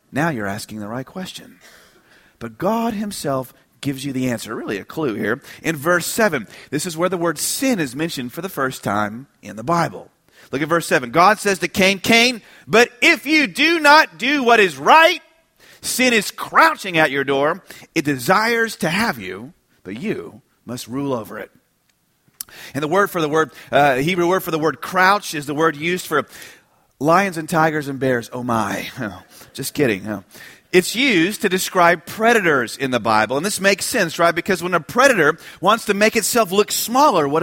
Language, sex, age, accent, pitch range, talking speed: English, male, 40-59, American, 145-235 Hz, 195 wpm